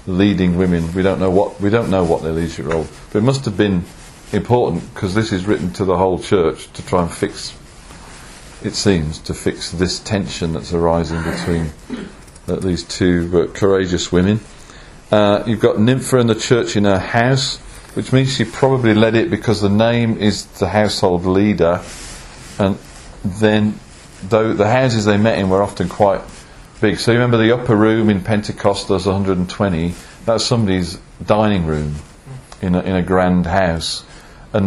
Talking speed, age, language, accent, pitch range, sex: 175 wpm, 40-59, English, British, 85-105 Hz, male